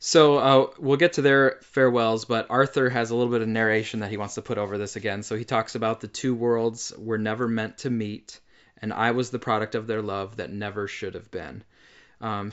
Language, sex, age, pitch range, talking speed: English, male, 20-39, 110-130 Hz, 235 wpm